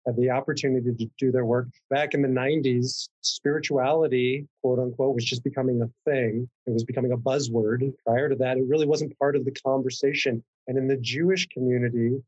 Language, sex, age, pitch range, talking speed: English, male, 30-49, 125-140 Hz, 190 wpm